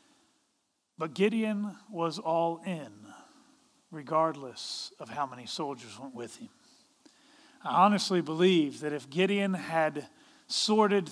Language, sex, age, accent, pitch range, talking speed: English, male, 40-59, American, 170-235 Hz, 115 wpm